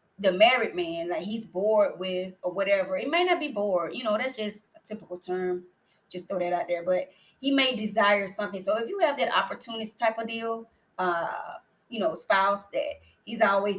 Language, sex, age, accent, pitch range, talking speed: English, female, 20-39, American, 185-240 Hz, 210 wpm